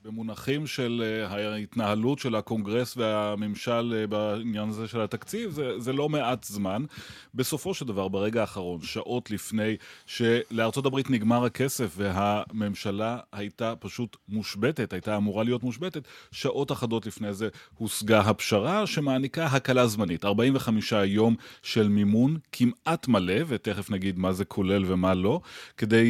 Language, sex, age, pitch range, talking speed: Hebrew, male, 30-49, 105-130 Hz, 130 wpm